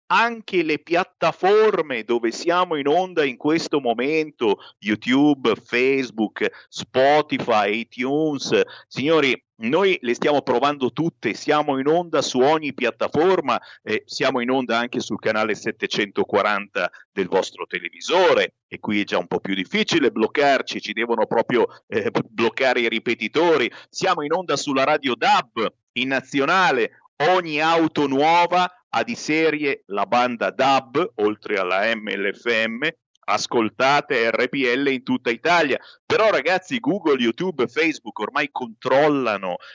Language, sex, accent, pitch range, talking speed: Italian, male, native, 125-180 Hz, 130 wpm